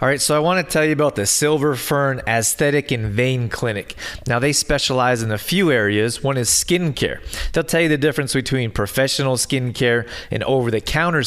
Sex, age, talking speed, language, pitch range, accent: male, 30-49, 200 wpm, English, 110-135 Hz, American